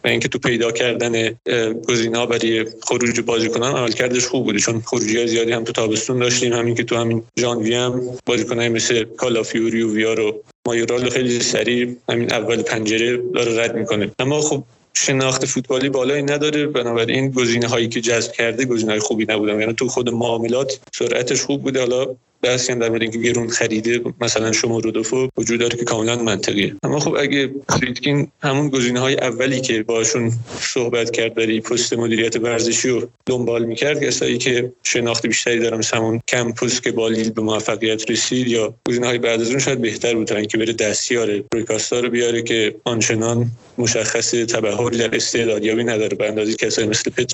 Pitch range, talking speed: 115-125 Hz, 160 wpm